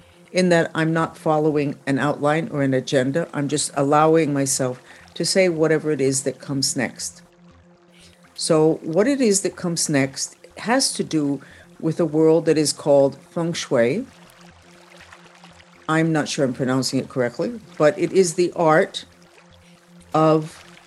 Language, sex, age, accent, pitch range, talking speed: Spanish, female, 60-79, American, 145-180 Hz, 150 wpm